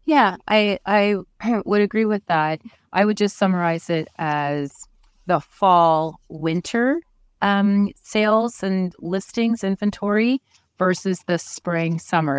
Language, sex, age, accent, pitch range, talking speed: English, female, 30-49, American, 150-185 Hz, 120 wpm